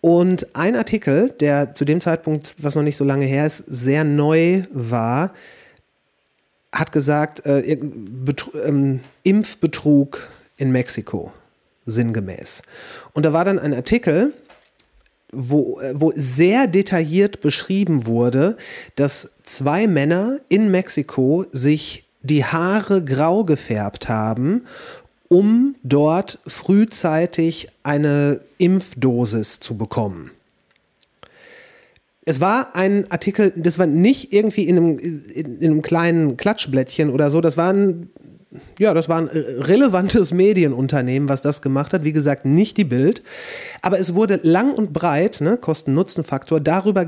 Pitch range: 145-190 Hz